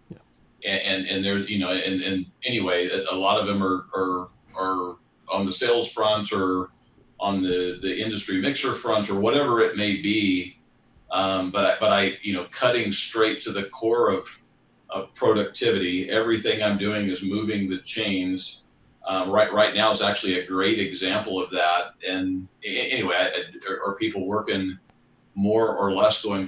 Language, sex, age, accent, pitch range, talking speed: English, male, 40-59, American, 95-105 Hz, 170 wpm